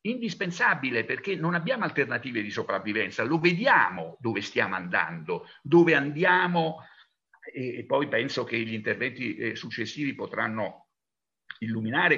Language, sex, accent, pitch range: Italian, male, native, 125-180 Hz